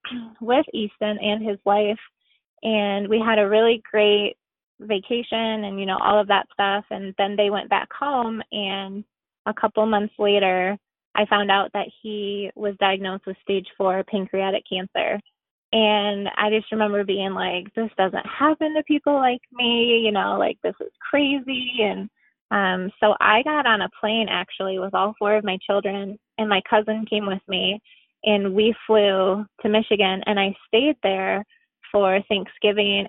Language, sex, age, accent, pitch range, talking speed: English, female, 20-39, American, 195-220 Hz, 170 wpm